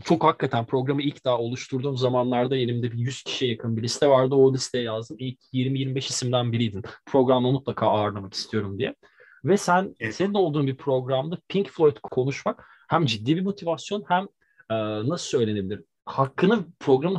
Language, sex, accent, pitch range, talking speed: Turkish, male, native, 115-160 Hz, 160 wpm